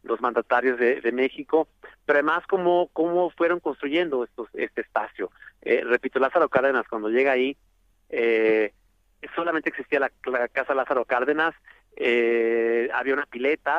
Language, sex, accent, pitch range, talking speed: Spanish, male, Mexican, 120-155 Hz, 145 wpm